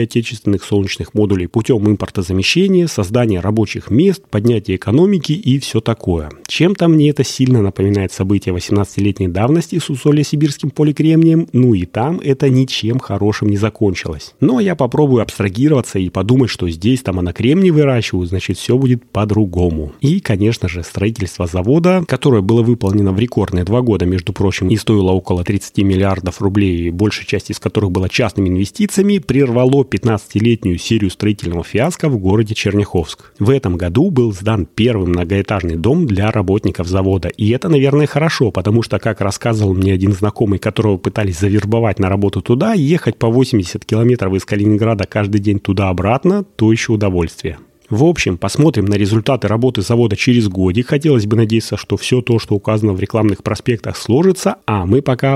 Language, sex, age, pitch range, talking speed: Russian, male, 30-49, 95-130 Hz, 160 wpm